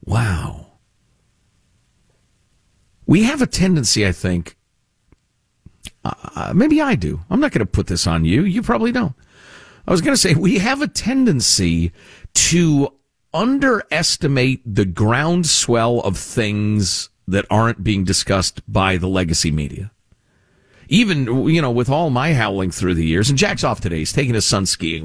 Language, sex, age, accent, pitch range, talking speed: English, male, 50-69, American, 90-140 Hz, 155 wpm